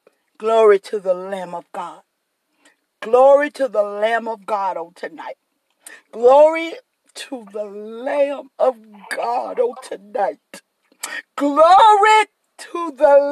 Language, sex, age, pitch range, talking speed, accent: English, female, 50-69, 245-330 Hz, 75 wpm, American